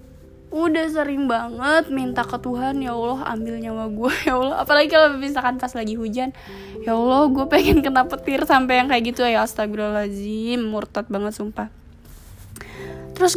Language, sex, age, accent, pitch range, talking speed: Indonesian, female, 20-39, native, 220-275 Hz, 155 wpm